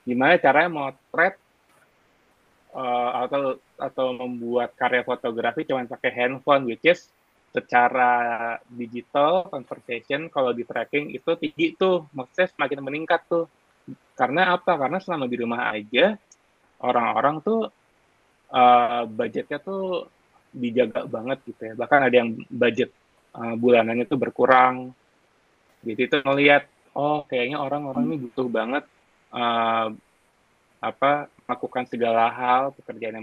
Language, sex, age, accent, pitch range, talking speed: Indonesian, male, 20-39, native, 115-140 Hz, 120 wpm